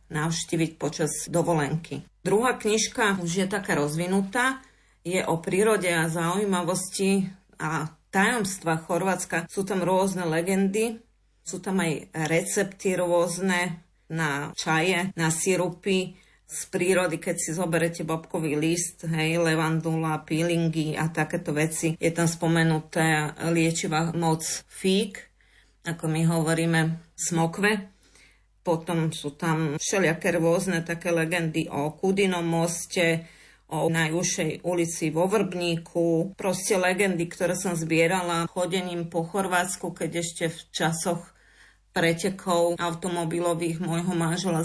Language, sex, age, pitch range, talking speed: Slovak, female, 30-49, 165-185 Hz, 115 wpm